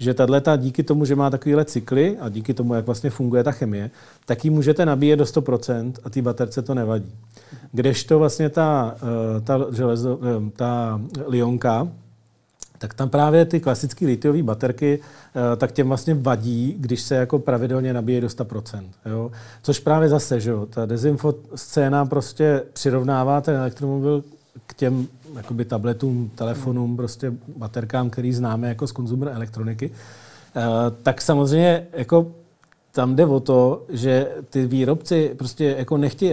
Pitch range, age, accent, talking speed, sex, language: 120-145 Hz, 40-59, native, 145 wpm, male, Czech